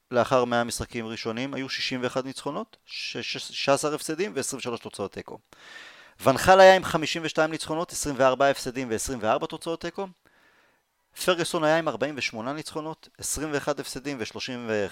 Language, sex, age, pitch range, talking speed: Hebrew, male, 30-49, 120-160 Hz, 130 wpm